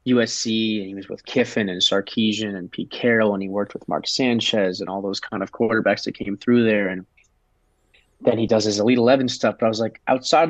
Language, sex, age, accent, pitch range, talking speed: English, male, 20-39, American, 100-115 Hz, 230 wpm